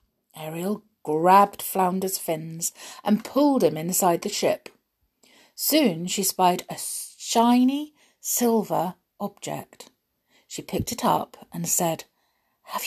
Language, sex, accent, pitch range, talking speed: English, female, British, 170-250 Hz, 110 wpm